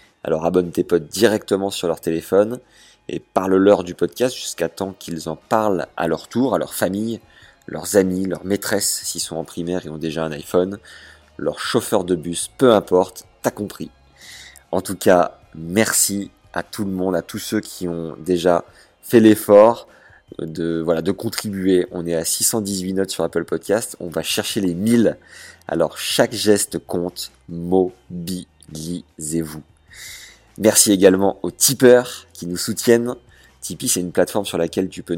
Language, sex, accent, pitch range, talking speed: French, male, French, 85-105 Hz, 165 wpm